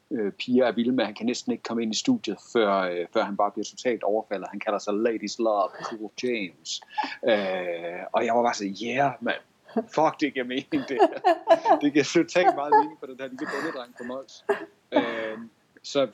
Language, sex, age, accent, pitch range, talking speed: Danish, male, 30-49, native, 105-130 Hz, 195 wpm